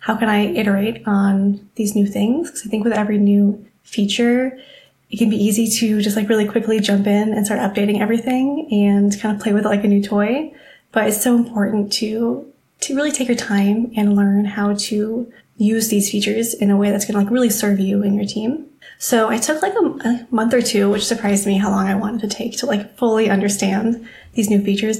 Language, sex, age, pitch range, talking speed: English, female, 20-39, 205-235 Hz, 225 wpm